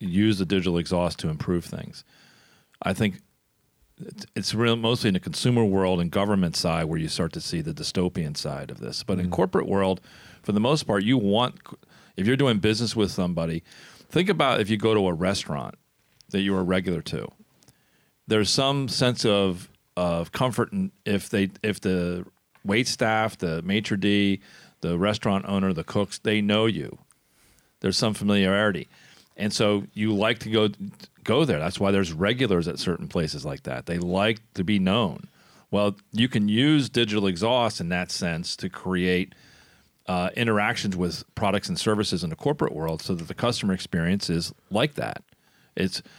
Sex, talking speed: male, 180 wpm